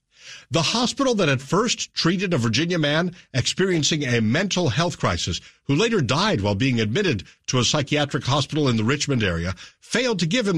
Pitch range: 115-155 Hz